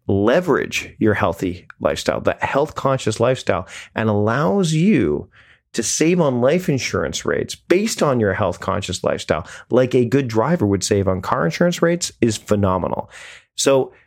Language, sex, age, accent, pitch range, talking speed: English, male, 30-49, American, 105-140 Hz, 155 wpm